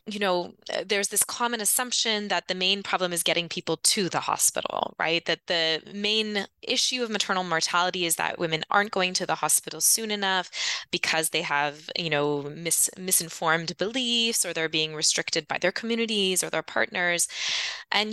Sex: female